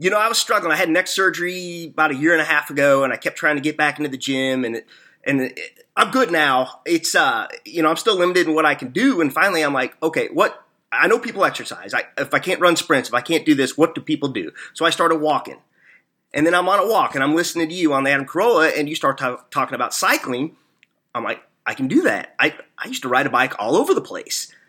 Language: English